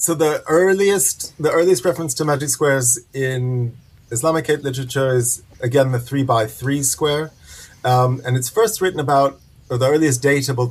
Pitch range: 115-140 Hz